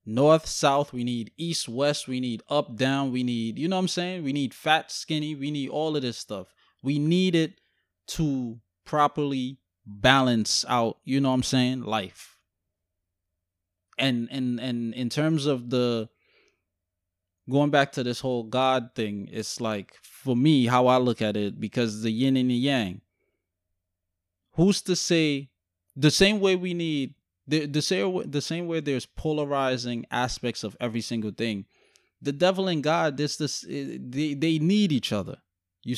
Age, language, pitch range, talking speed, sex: 20-39, English, 110-150 Hz, 170 wpm, male